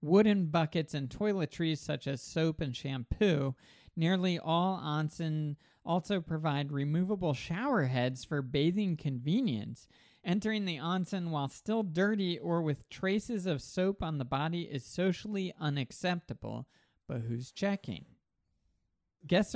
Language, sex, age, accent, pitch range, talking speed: English, male, 40-59, American, 135-170 Hz, 125 wpm